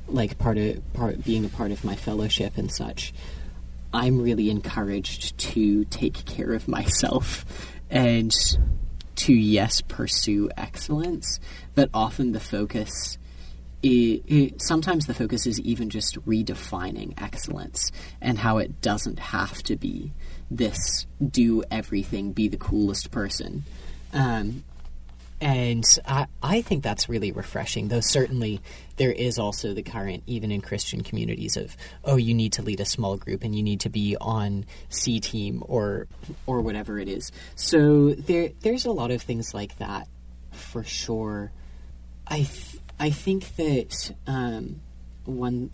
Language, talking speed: English, 135 wpm